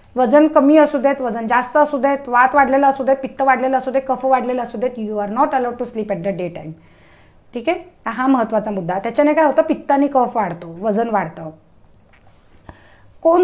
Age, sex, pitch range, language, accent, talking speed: 20-39, female, 230-285 Hz, Marathi, native, 200 wpm